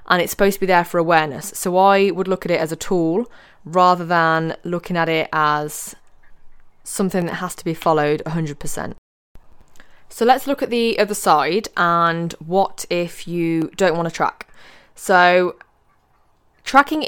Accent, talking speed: British, 165 wpm